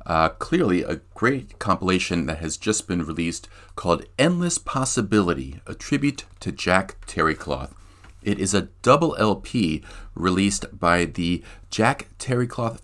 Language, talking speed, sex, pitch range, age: English, 130 wpm, male, 85-100 Hz, 40-59